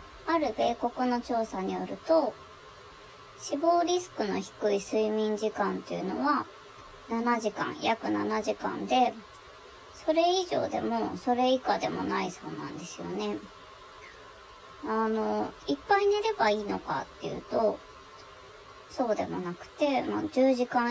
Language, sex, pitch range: Japanese, male, 195-310 Hz